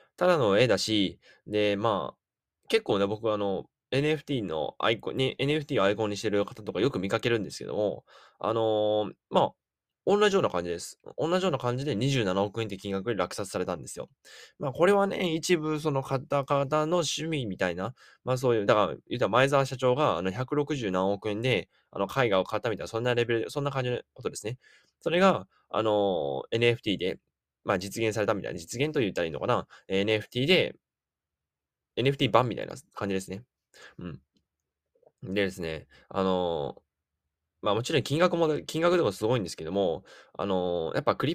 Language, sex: Japanese, male